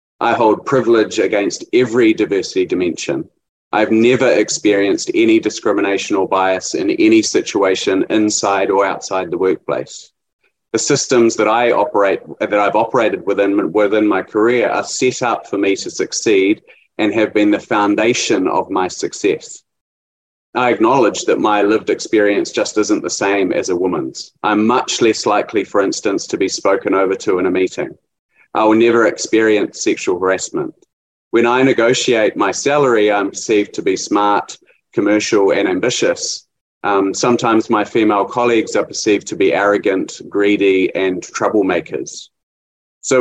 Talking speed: 150 wpm